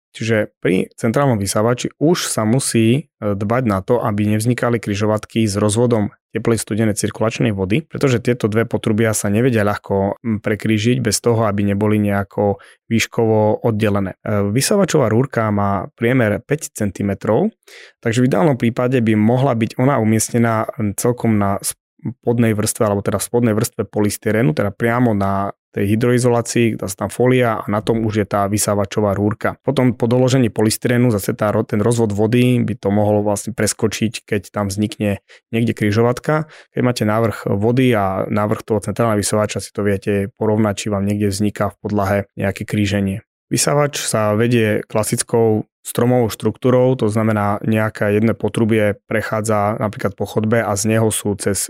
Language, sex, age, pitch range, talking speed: Slovak, male, 20-39, 105-120 Hz, 155 wpm